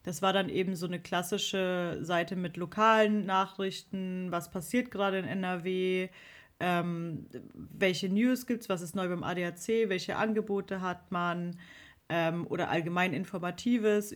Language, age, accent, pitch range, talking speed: English, 30-49, German, 180-210 Hz, 145 wpm